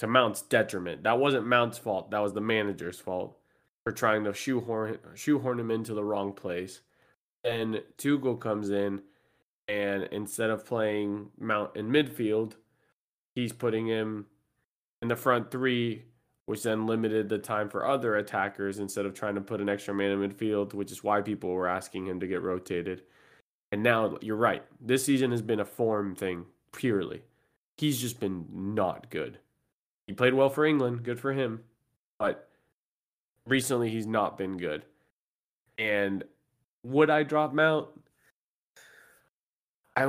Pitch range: 100-125 Hz